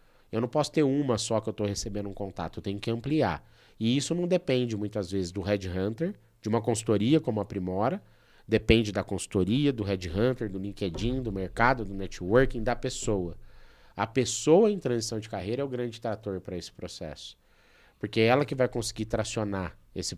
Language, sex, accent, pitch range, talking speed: Portuguese, male, Brazilian, 95-120 Hz, 195 wpm